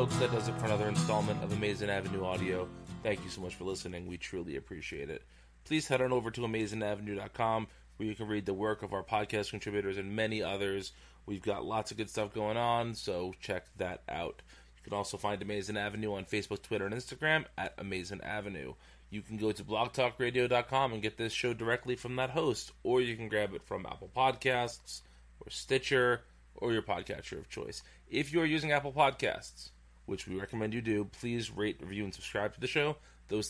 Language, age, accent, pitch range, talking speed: English, 30-49, American, 95-120 Hz, 200 wpm